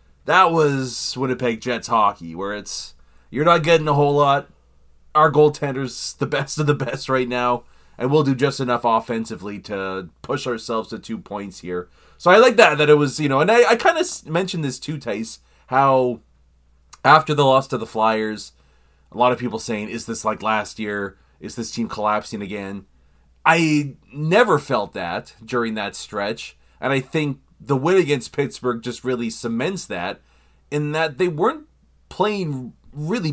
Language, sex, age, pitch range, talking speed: English, male, 30-49, 100-145 Hz, 175 wpm